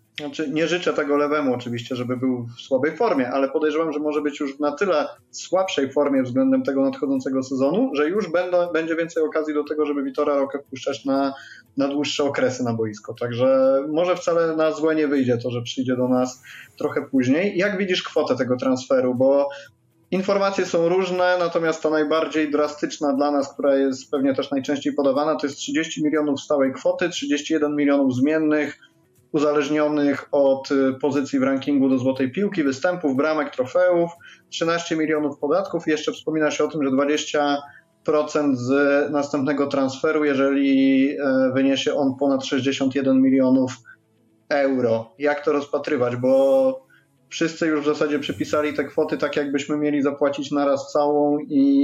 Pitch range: 135-155 Hz